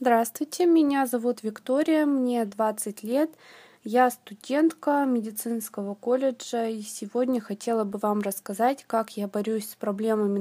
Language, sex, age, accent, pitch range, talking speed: Russian, female, 20-39, native, 215-255 Hz, 125 wpm